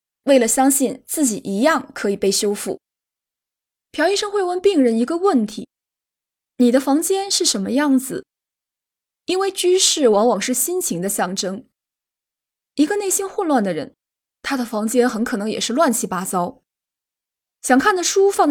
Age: 20-39